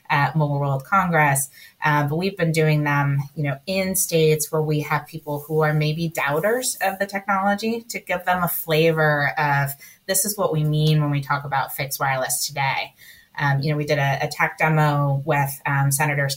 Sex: female